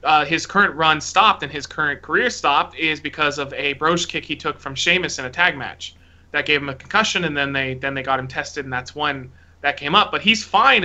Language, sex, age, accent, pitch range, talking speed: English, male, 30-49, American, 140-190 Hz, 255 wpm